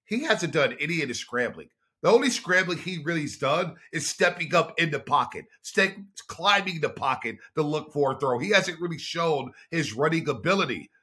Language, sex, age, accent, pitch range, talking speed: English, male, 40-59, American, 135-185 Hz, 190 wpm